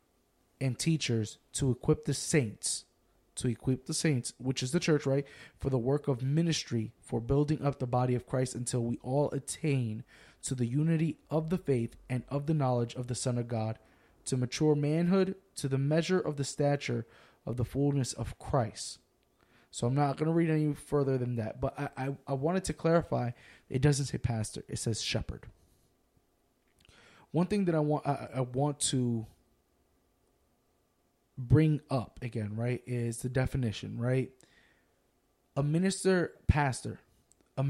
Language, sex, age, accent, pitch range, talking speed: English, male, 20-39, American, 120-150 Hz, 165 wpm